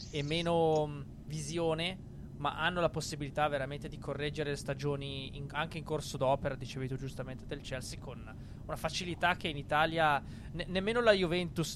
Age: 20-39